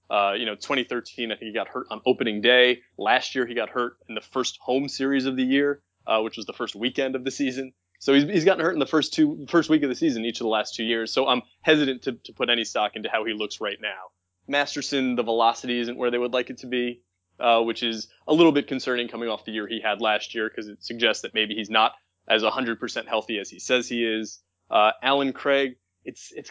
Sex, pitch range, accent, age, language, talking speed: male, 110-130 Hz, American, 20-39, English, 260 wpm